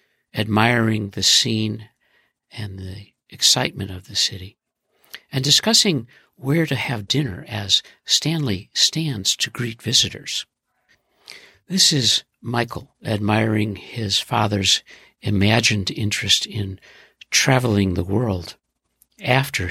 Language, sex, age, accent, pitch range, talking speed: English, male, 60-79, American, 95-130 Hz, 105 wpm